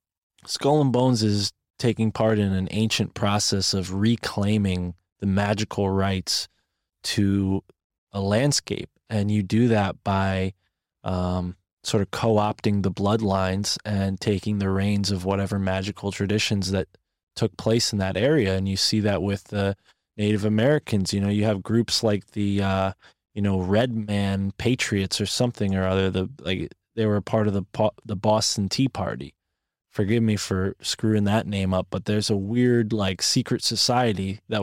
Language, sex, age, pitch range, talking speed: English, male, 20-39, 95-110 Hz, 165 wpm